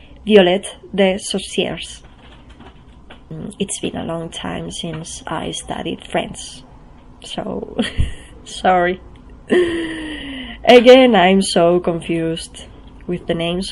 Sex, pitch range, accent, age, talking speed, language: female, 170-210 Hz, Spanish, 20-39, 90 wpm, English